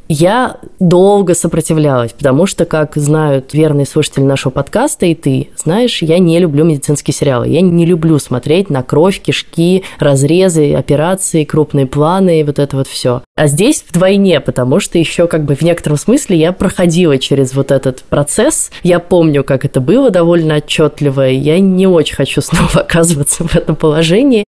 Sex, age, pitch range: female, 20-39, 145-180 Hz